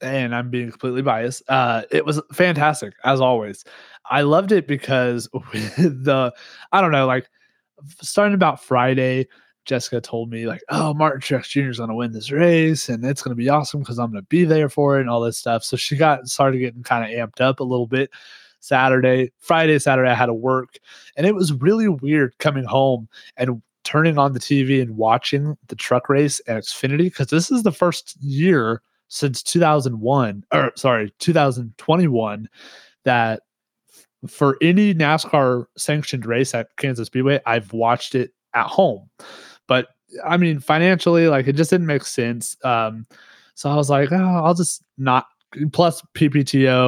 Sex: male